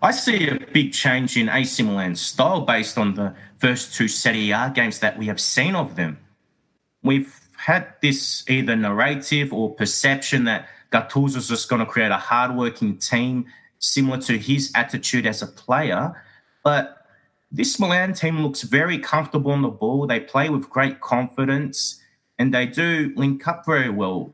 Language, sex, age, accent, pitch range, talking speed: English, male, 30-49, Australian, 110-140 Hz, 170 wpm